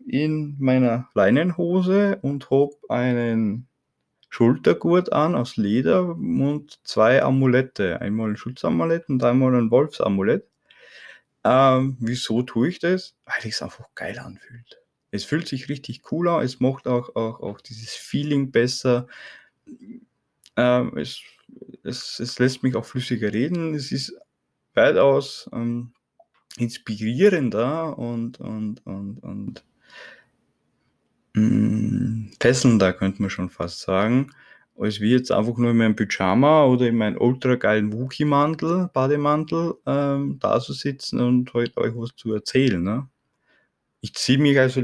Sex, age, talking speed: male, 20-39, 135 wpm